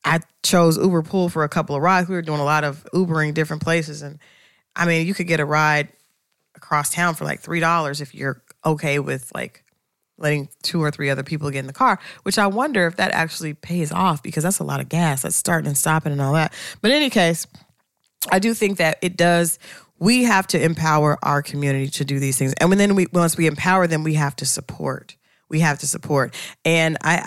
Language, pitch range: English, 145-170 Hz